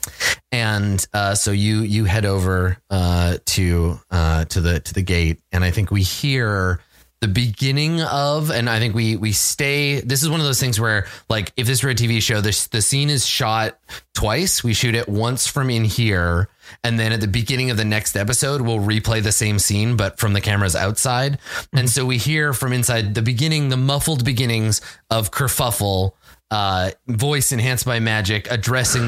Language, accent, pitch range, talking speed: English, American, 95-120 Hz, 195 wpm